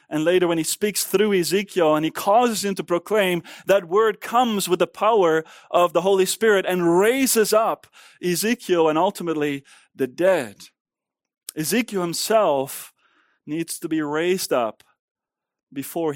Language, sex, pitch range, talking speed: English, male, 160-205 Hz, 145 wpm